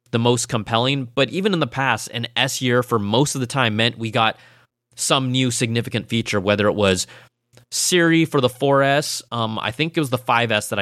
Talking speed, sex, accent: 205 wpm, male, American